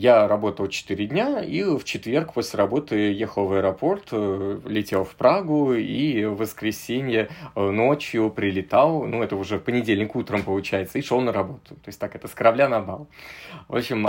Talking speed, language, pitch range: 175 wpm, Russian, 100-145 Hz